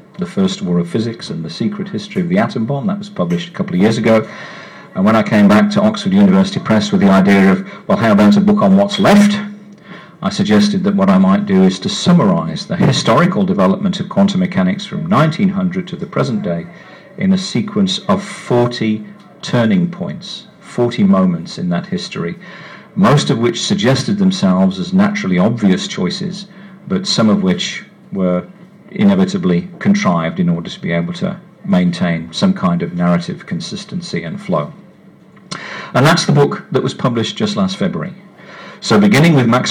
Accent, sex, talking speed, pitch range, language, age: British, male, 180 wpm, 175-205 Hz, English, 50-69